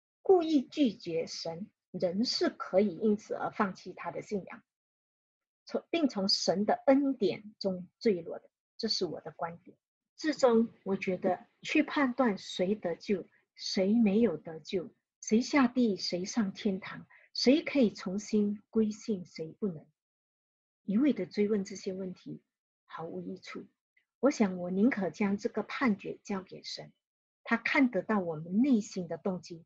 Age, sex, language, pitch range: 50-69, female, English, 180-240 Hz